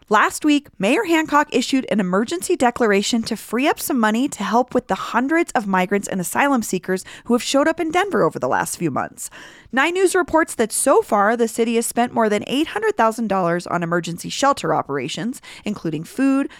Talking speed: 190 wpm